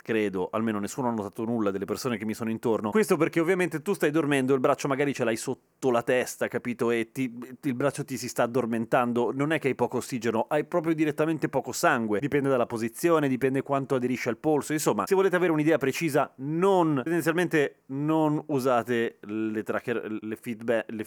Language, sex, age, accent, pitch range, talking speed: Italian, male, 30-49, native, 120-160 Hz, 190 wpm